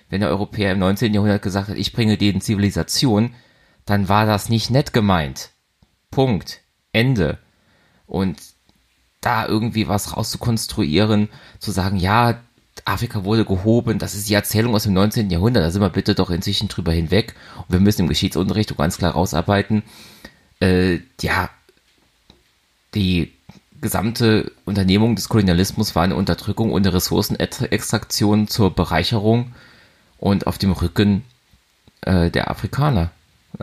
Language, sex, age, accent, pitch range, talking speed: German, male, 30-49, German, 90-105 Hz, 140 wpm